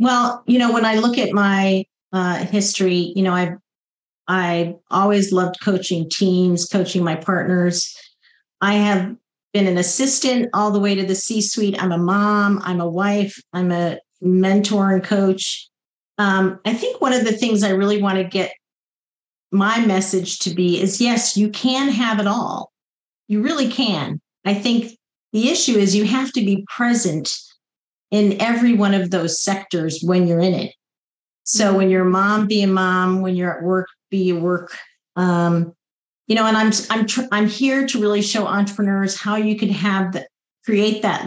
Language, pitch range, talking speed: English, 185-220 Hz, 180 wpm